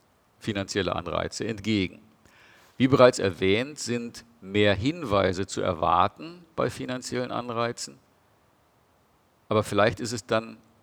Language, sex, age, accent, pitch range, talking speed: German, male, 50-69, German, 100-125 Hz, 105 wpm